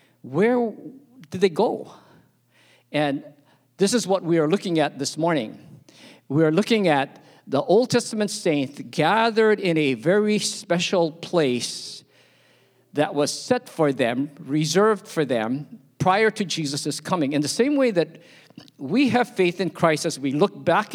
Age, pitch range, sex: 50-69, 145-200 Hz, male